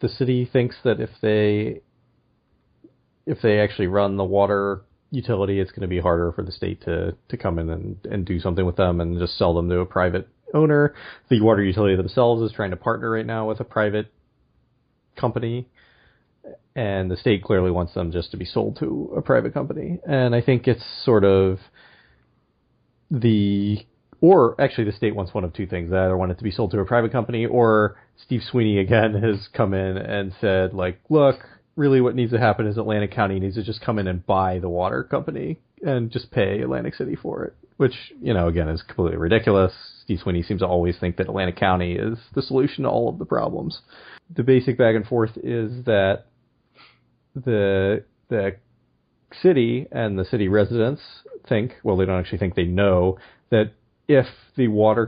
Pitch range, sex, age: 95-120 Hz, male, 30-49